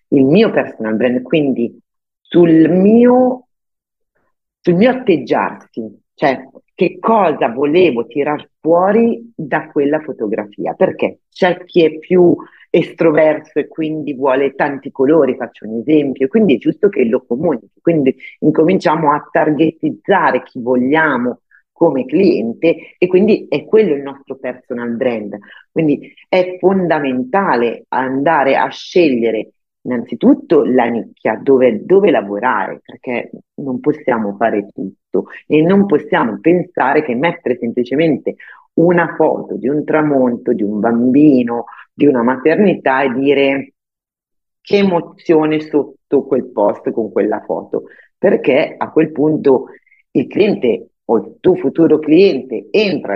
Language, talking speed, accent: Italian, 125 wpm, native